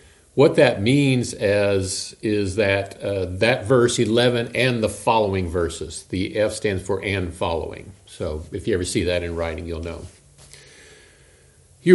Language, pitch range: English, 95-125 Hz